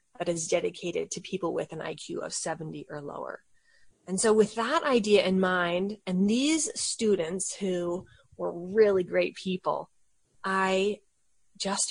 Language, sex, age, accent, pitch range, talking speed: English, female, 30-49, American, 170-205 Hz, 145 wpm